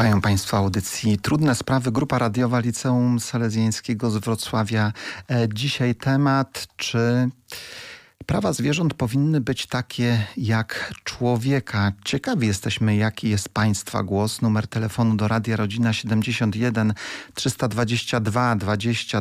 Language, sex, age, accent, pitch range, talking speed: Polish, male, 40-59, native, 110-130 Hz, 105 wpm